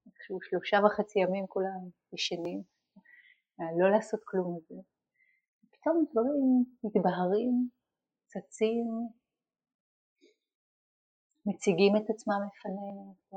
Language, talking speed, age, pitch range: Hebrew, 80 wpm, 30-49, 190-235 Hz